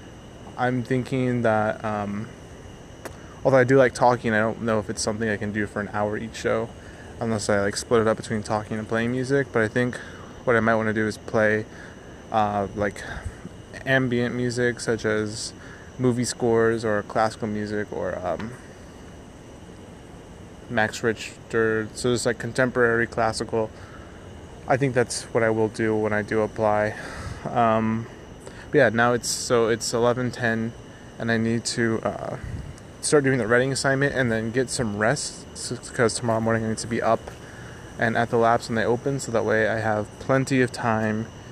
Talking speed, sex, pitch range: 175 wpm, male, 105-120 Hz